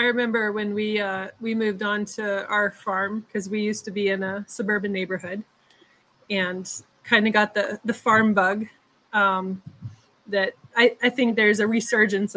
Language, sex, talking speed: English, female, 175 wpm